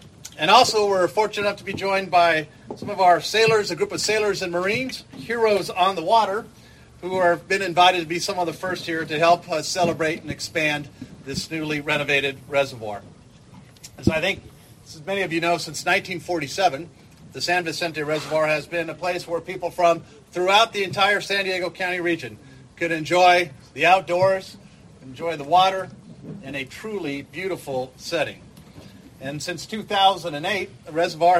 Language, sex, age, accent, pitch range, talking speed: English, male, 40-59, American, 150-190 Hz, 170 wpm